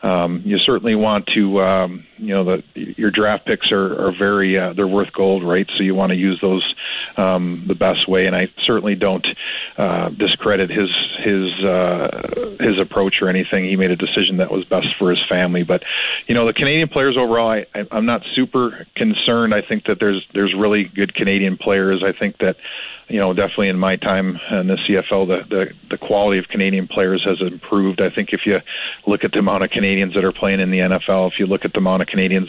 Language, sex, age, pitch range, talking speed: English, male, 40-59, 95-105 Hz, 215 wpm